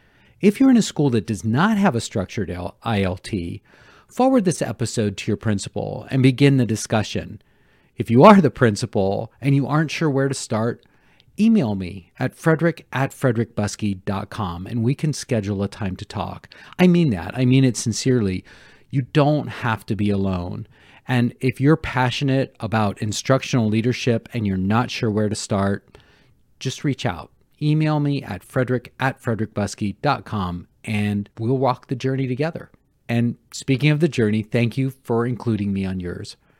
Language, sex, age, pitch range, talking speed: English, male, 40-59, 100-135 Hz, 165 wpm